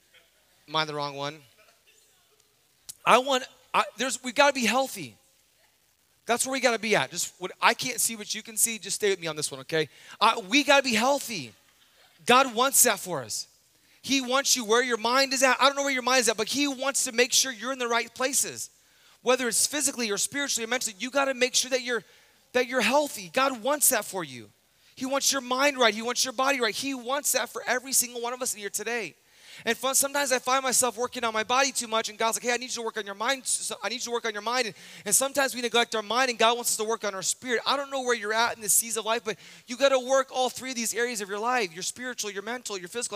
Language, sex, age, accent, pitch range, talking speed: English, male, 30-49, American, 195-255 Hz, 275 wpm